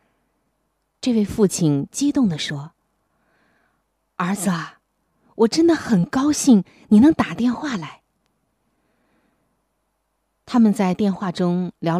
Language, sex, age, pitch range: Chinese, female, 20-39, 165-240 Hz